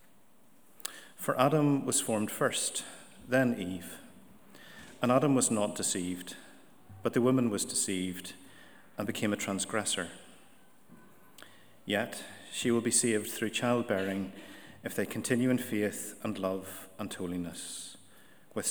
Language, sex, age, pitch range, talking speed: English, male, 40-59, 100-130 Hz, 120 wpm